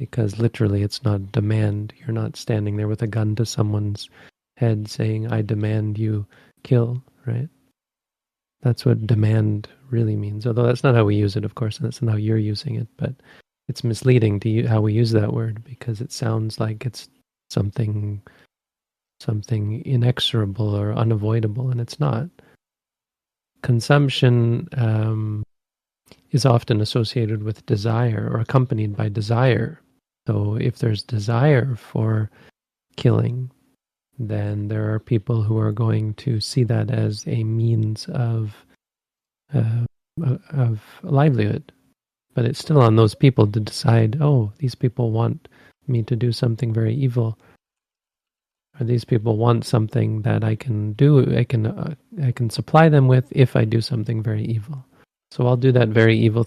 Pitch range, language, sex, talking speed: 110-125 Hz, English, male, 155 wpm